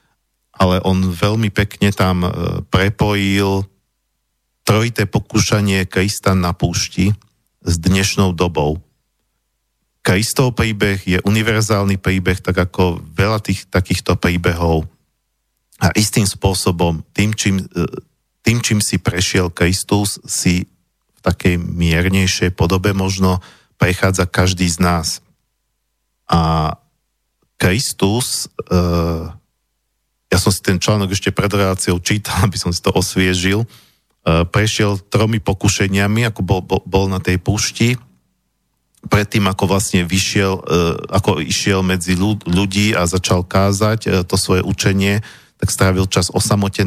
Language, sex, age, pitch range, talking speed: Slovak, male, 50-69, 90-100 Hz, 120 wpm